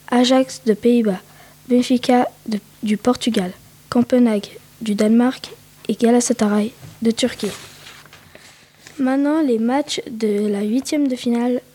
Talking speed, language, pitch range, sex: 110 wpm, French, 215-260 Hz, female